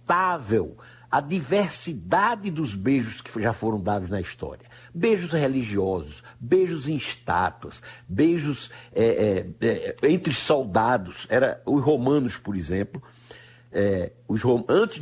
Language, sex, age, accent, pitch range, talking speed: Portuguese, male, 60-79, Brazilian, 115-160 Hz, 115 wpm